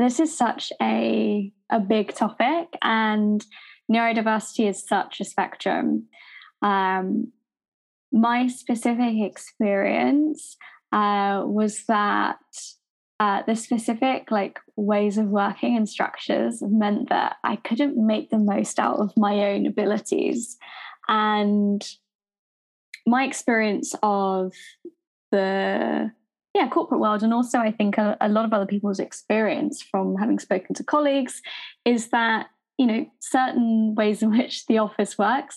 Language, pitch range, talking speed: English, 205-255 Hz, 130 wpm